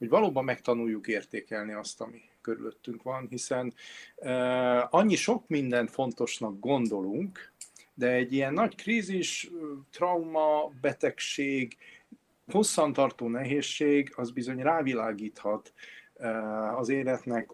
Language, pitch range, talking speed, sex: Hungarian, 120-160 Hz, 100 wpm, male